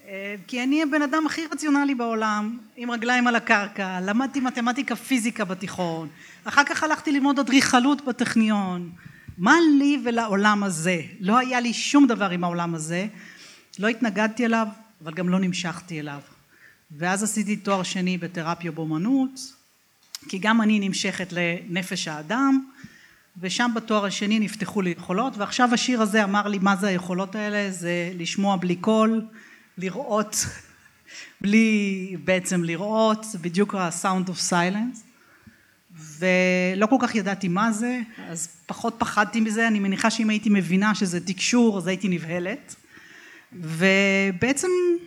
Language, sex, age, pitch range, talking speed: Hebrew, female, 40-59, 185-240 Hz, 135 wpm